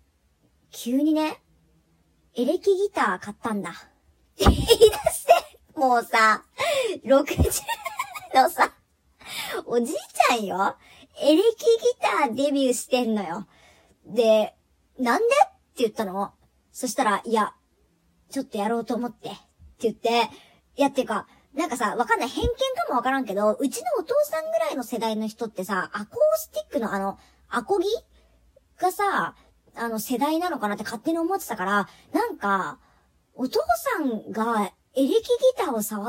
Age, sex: 40-59, male